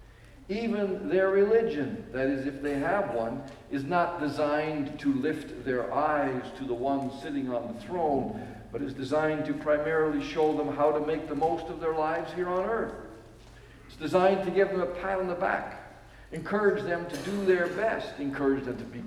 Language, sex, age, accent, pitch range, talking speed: English, male, 60-79, American, 115-165 Hz, 190 wpm